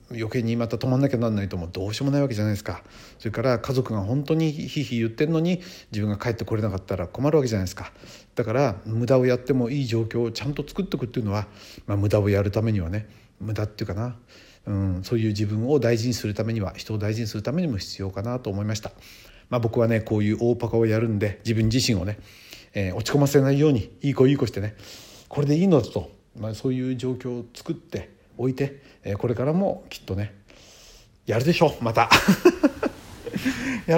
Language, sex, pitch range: Japanese, male, 100-135 Hz